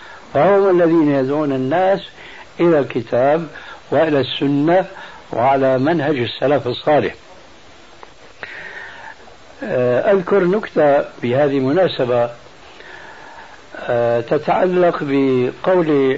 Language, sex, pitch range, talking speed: Arabic, male, 135-175 Hz, 65 wpm